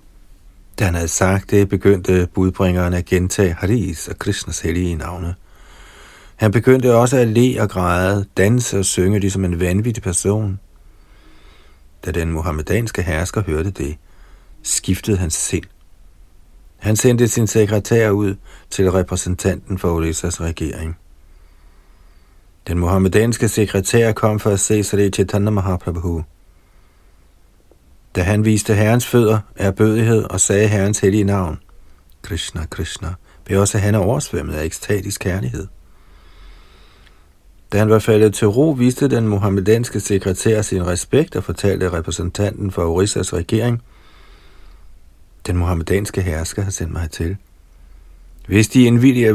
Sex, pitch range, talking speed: male, 80-105 Hz, 130 wpm